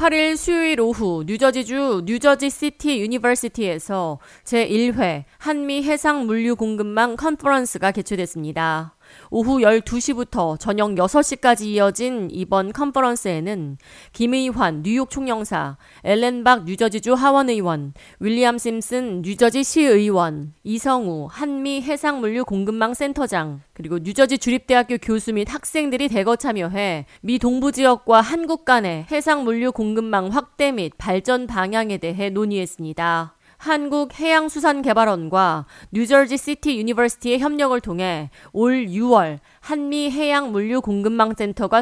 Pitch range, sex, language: 190-265 Hz, female, Korean